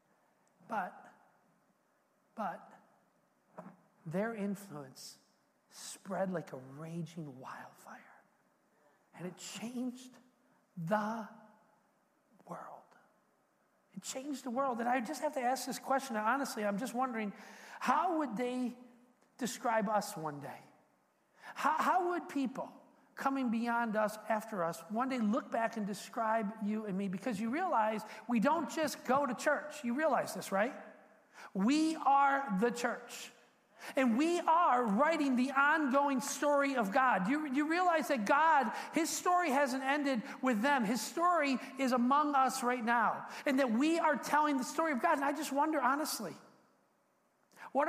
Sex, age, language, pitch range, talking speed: male, 50-69, English, 215-285 Hz, 145 wpm